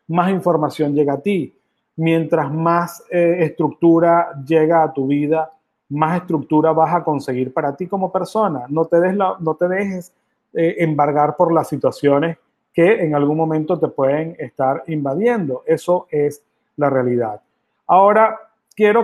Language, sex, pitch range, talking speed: Spanish, male, 150-185 Hz, 140 wpm